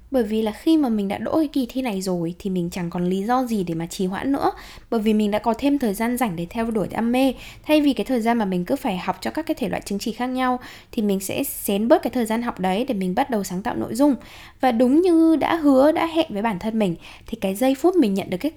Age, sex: 10-29, female